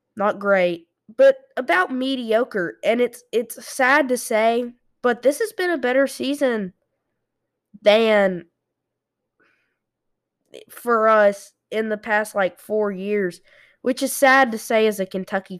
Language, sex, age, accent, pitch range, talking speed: English, female, 20-39, American, 175-225 Hz, 135 wpm